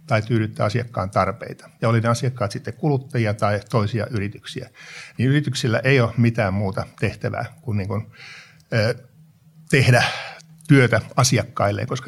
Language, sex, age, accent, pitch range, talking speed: Finnish, male, 60-79, native, 110-135 Hz, 140 wpm